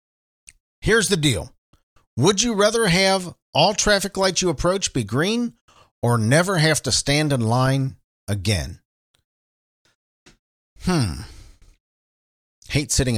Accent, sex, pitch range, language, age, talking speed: American, male, 90-135 Hz, English, 40-59, 115 wpm